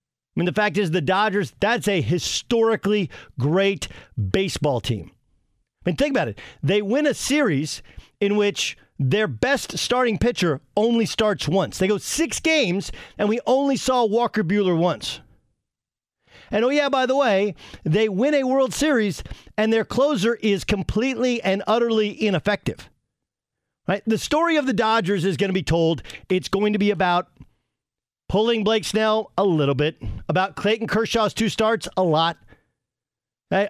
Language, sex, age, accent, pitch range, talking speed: English, male, 50-69, American, 170-225 Hz, 160 wpm